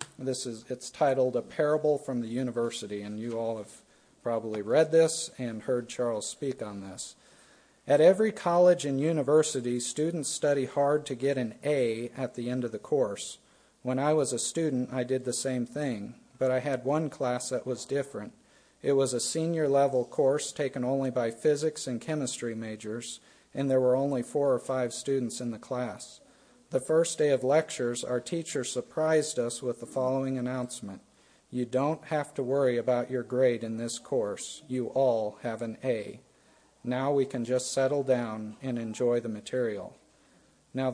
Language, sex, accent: English, male, American